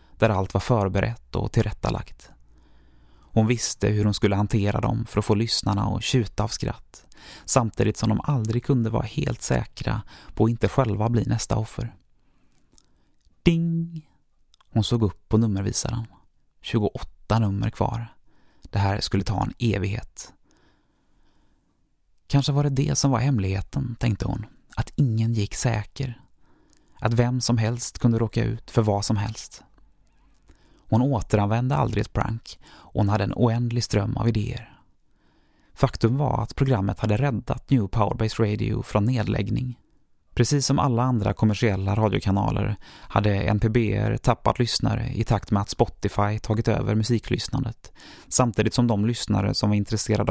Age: 20-39